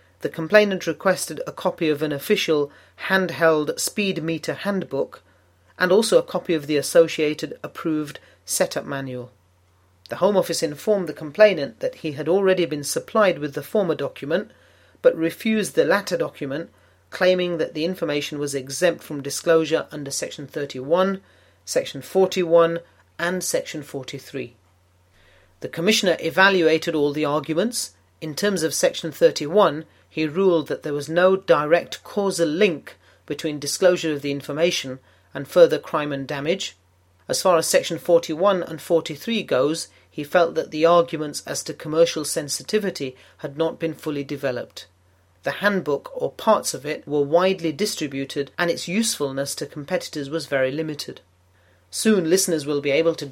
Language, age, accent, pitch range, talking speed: English, 40-59, British, 145-175 Hz, 150 wpm